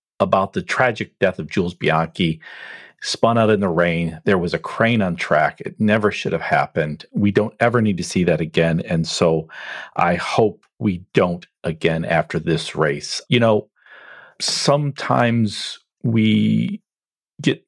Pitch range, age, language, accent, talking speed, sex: 95-125 Hz, 40-59, English, American, 155 wpm, male